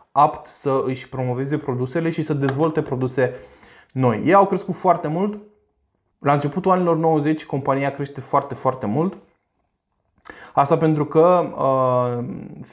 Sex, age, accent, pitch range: male, 20-39, native, 130-160 Hz